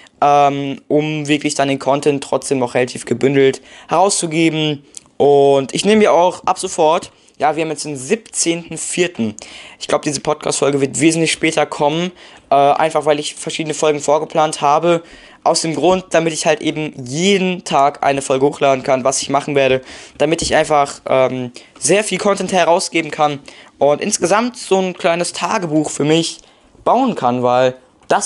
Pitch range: 140-165 Hz